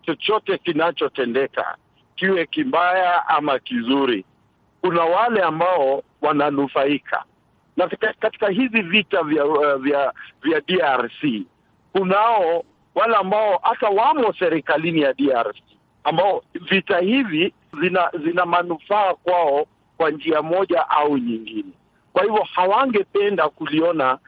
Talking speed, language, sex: 110 wpm, Swahili, male